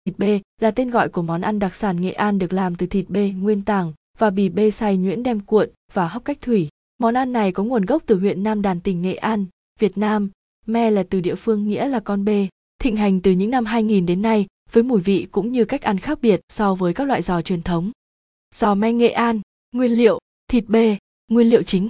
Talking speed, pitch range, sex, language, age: 245 wpm, 195-230 Hz, female, Vietnamese, 20-39